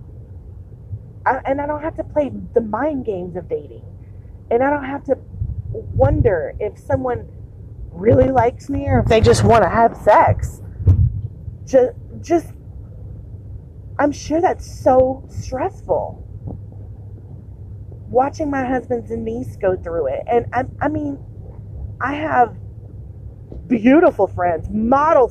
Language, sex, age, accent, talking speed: English, female, 30-49, American, 130 wpm